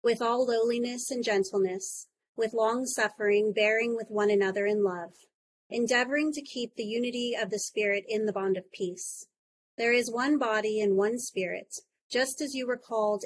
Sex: female